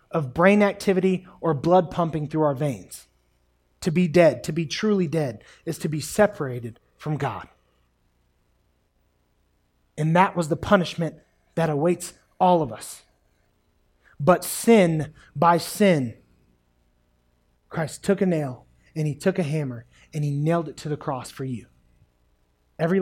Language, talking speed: English, 145 wpm